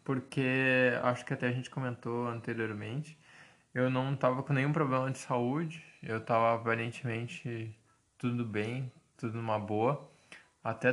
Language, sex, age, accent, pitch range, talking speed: Portuguese, male, 20-39, Brazilian, 115-130 Hz, 135 wpm